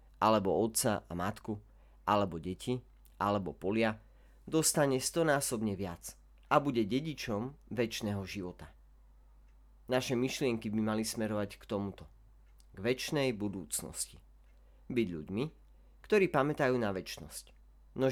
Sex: male